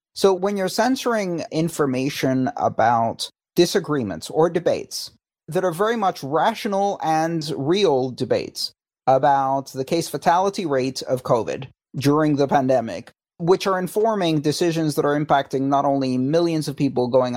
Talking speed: 140 wpm